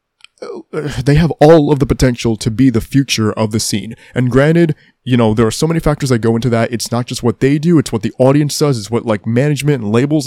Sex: male